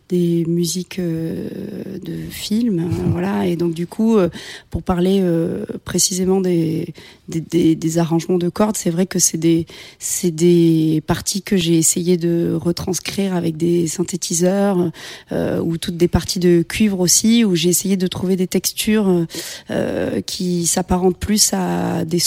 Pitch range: 170-195 Hz